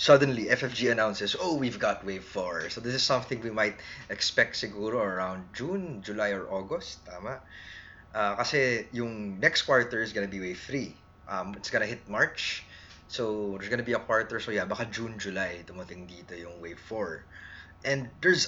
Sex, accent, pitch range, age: male, Filipino, 100-130 Hz, 20-39